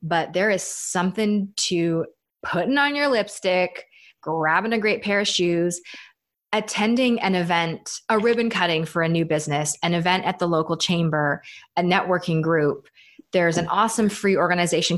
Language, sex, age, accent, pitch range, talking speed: English, female, 20-39, American, 165-200 Hz, 155 wpm